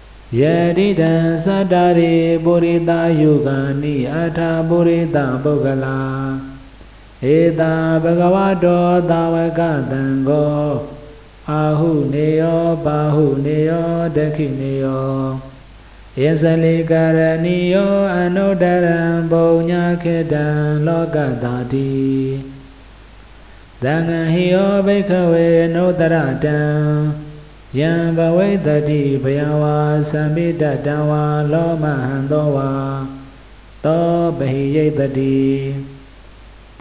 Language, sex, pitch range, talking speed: Vietnamese, male, 135-165 Hz, 60 wpm